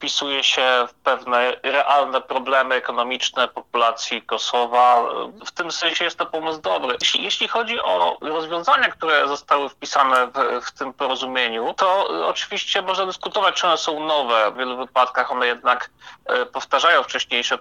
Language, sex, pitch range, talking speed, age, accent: Polish, male, 125-160 Hz, 140 wpm, 30-49, native